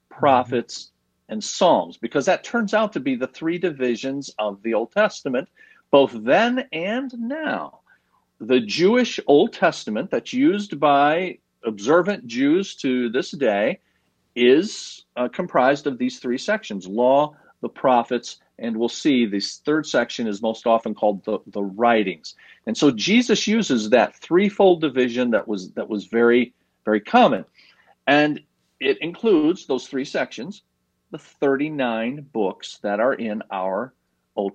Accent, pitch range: American, 115-185 Hz